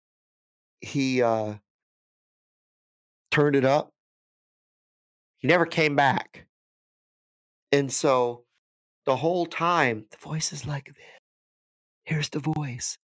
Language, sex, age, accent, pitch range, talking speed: English, male, 40-59, American, 125-165 Hz, 100 wpm